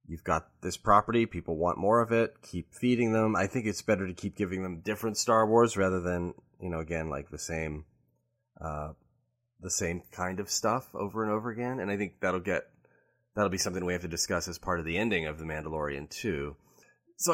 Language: English